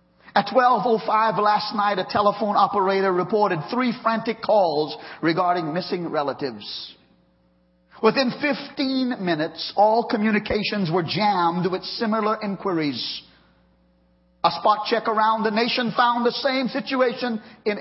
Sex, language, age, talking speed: male, English, 50-69, 120 wpm